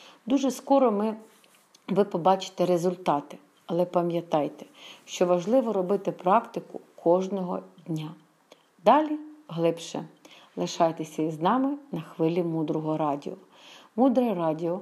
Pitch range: 160-205 Hz